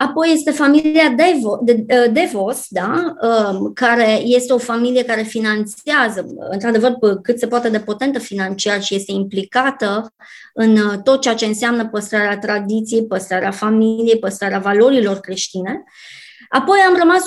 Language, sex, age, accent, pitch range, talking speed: Romanian, male, 20-39, native, 210-255 Hz, 120 wpm